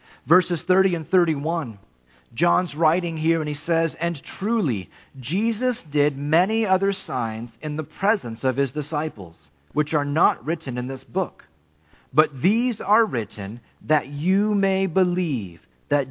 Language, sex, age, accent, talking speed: English, male, 40-59, American, 145 wpm